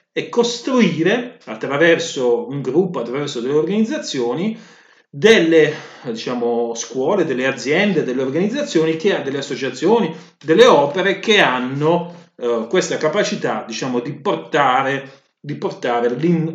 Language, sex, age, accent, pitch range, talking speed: Italian, male, 30-49, native, 135-175 Hz, 115 wpm